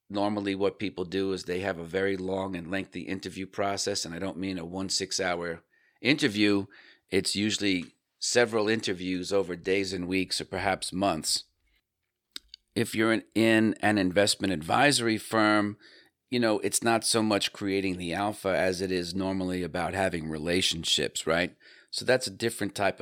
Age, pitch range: 40-59, 90-100 Hz